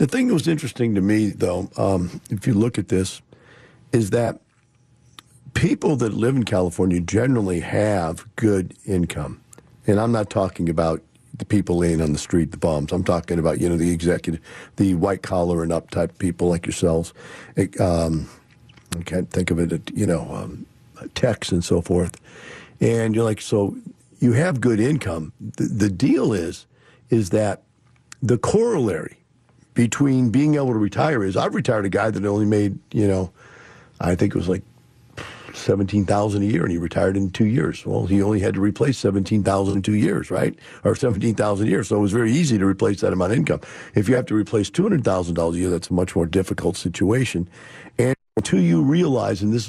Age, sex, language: 50-69, male, English